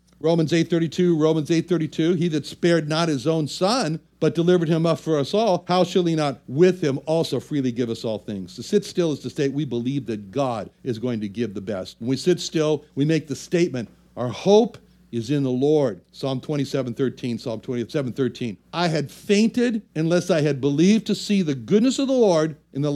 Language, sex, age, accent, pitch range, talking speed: English, male, 60-79, American, 130-190 Hz, 205 wpm